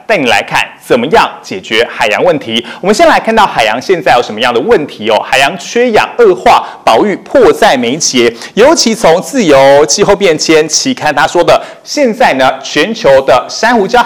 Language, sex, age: Chinese, male, 30-49